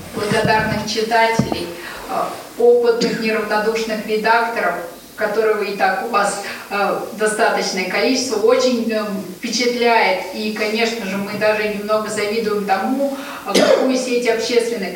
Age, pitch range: 20-39, 205-240 Hz